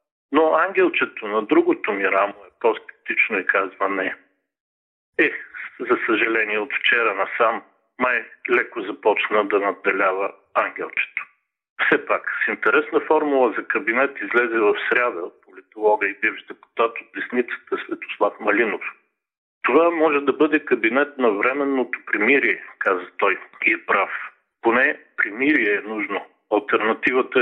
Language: Bulgarian